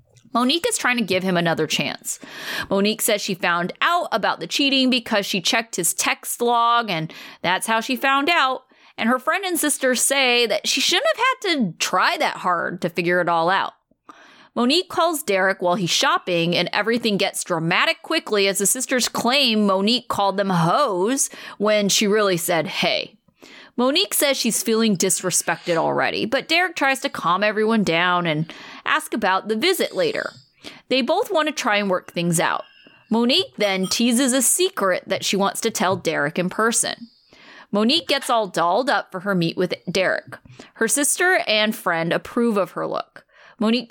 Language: English